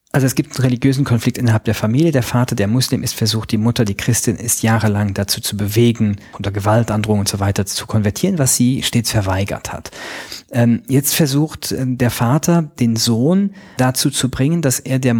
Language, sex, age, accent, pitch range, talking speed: German, male, 40-59, German, 105-130 Hz, 190 wpm